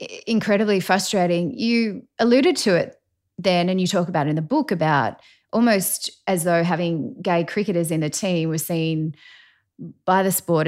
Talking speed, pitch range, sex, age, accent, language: 170 wpm, 160-195 Hz, female, 20-39, Australian, English